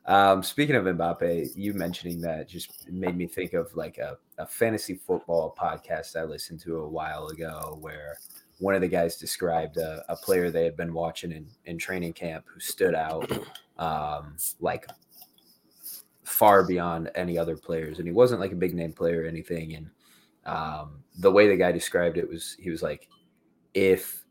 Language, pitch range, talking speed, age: English, 80-90 Hz, 185 wpm, 20-39